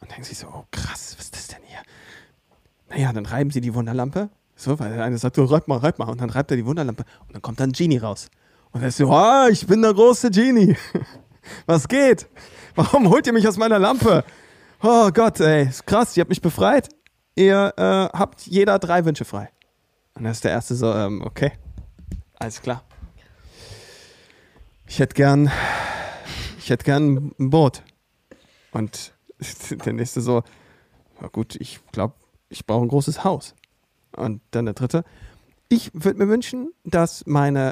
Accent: German